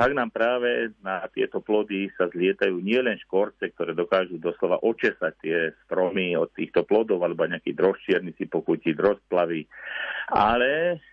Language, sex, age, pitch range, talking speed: Slovak, male, 50-69, 95-125 Hz, 140 wpm